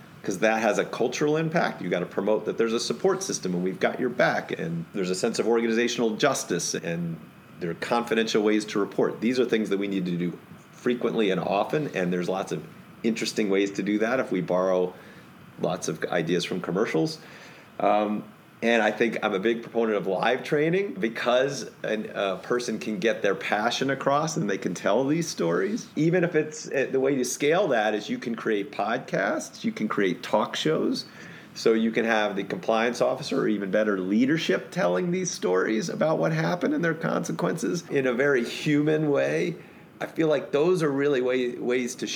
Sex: male